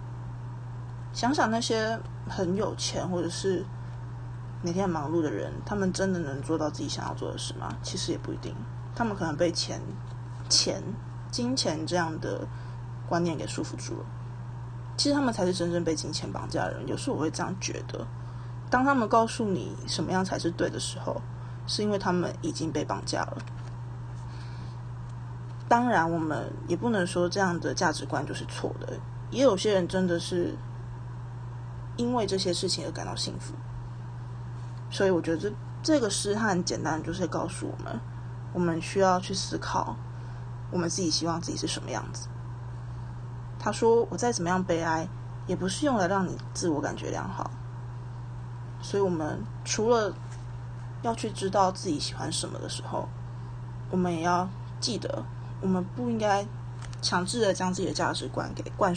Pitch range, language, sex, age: 120-170 Hz, Chinese, female, 20-39